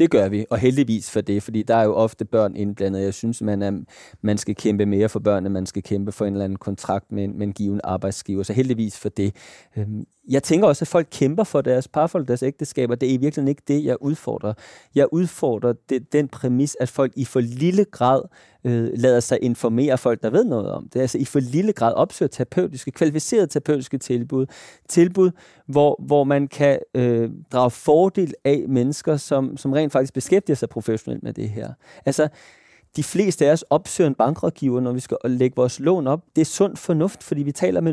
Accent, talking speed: native, 210 wpm